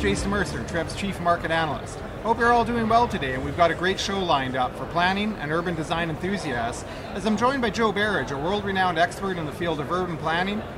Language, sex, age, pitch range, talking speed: English, male, 30-49, 160-195 Hz, 235 wpm